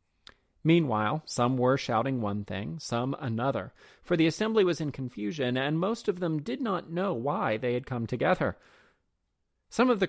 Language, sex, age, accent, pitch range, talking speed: English, male, 30-49, American, 115-175 Hz, 170 wpm